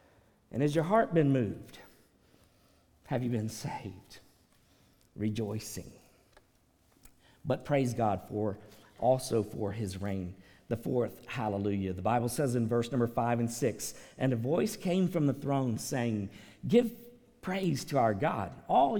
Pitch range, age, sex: 105-140 Hz, 50-69, male